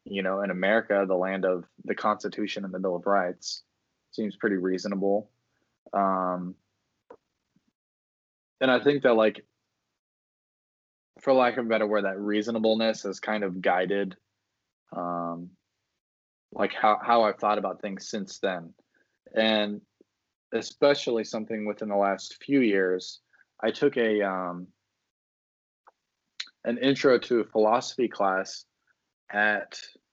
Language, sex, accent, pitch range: English, male, American, 95-110 Hz